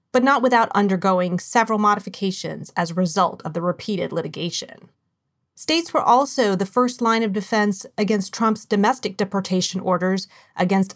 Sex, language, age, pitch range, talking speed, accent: female, English, 30-49, 185-225 Hz, 150 wpm, American